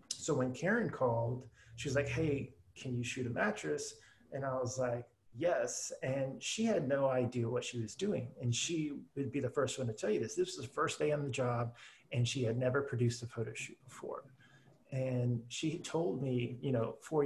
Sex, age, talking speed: male, 30-49, 215 wpm